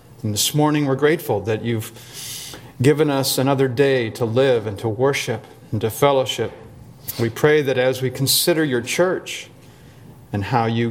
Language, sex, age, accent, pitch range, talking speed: English, male, 40-59, American, 120-150 Hz, 165 wpm